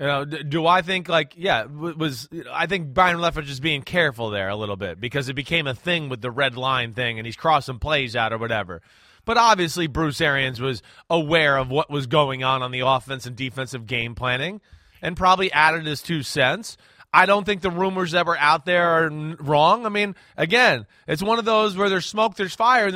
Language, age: English, 30-49